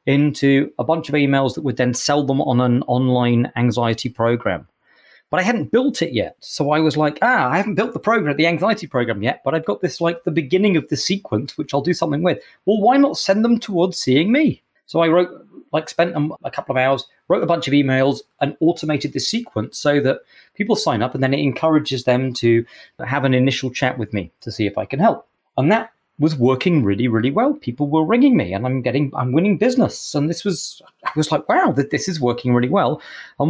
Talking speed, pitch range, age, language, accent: 235 wpm, 130-170 Hz, 30-49, English, British